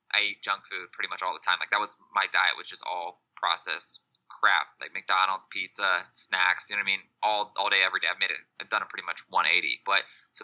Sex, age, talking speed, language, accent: male, 20-39, 255 wpm, English, American